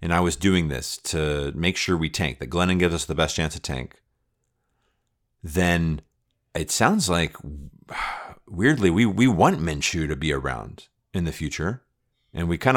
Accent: American